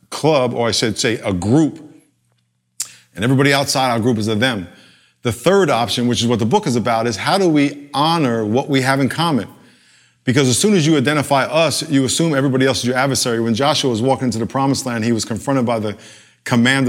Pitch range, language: 120-145 Hz, English